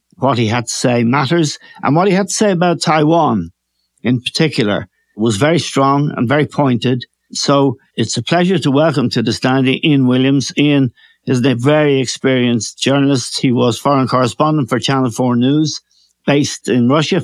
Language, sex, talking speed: English, male, 180 wpm